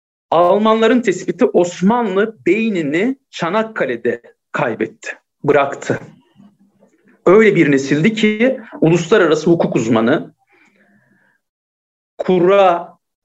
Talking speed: 70 wpm